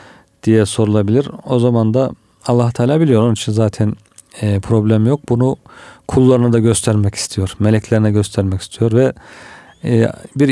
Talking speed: 130 wpm